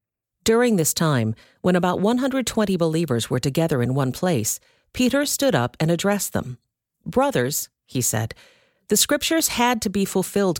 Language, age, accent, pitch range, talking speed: English, 50-69, American, 135-195 Hz, 155 wpm